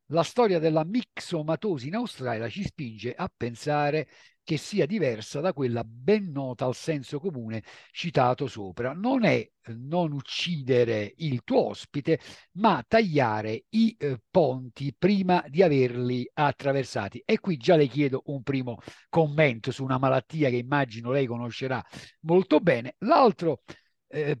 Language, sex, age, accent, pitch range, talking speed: Italian, male, 50-69, native, 130-195 Hz, 140 wpm